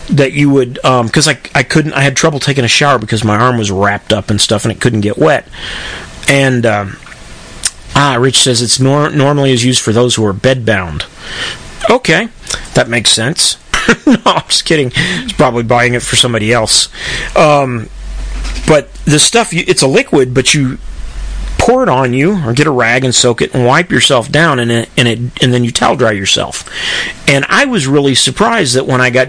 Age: 40-59